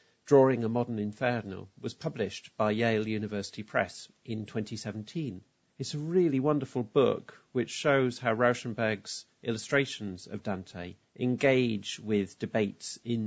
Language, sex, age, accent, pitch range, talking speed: English, male, 40-59, British, 100-125 Hz, 125 wpm